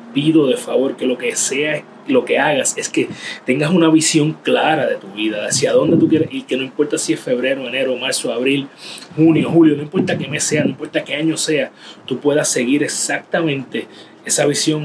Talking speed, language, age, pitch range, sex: 205 wpm, Spanish, 30-49, 130-180 Hz, male